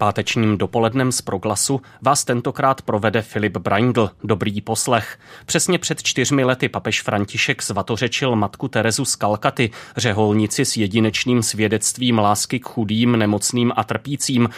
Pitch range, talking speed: 110-130 Hz, 130 wpm